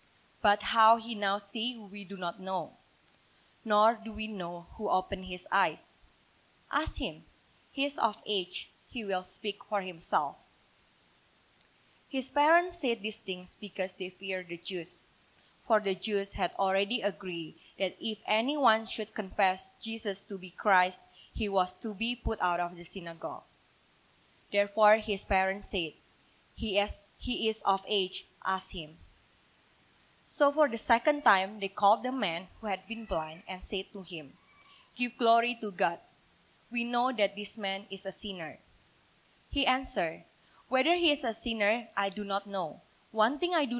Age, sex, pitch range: 20-39, female, 190-235 Hz